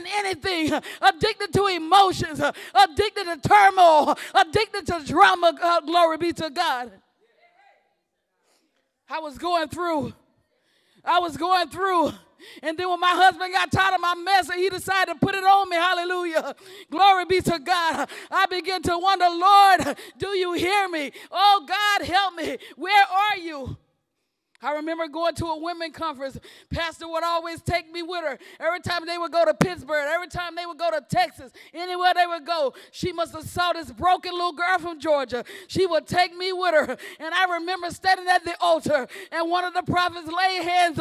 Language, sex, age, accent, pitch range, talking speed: English, female, 40-59, American, 330-380 Hz, 180 wpm